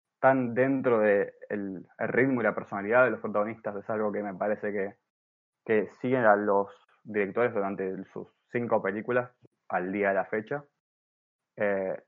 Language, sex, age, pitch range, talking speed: Spanish, male, 20-39, 105-125 Hz, 165 wpm